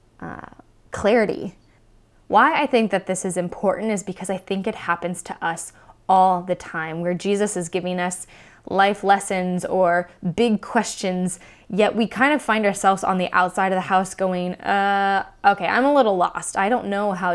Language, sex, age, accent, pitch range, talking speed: English, female, 20-39, American, 180-215 Hz, 185 wpm